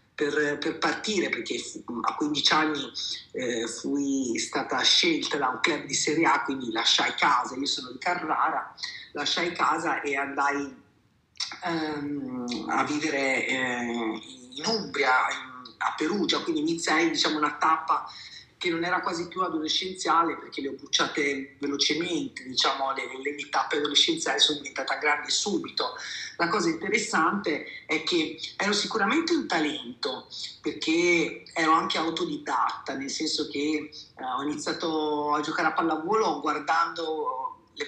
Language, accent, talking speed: Italian, native, 135 wpm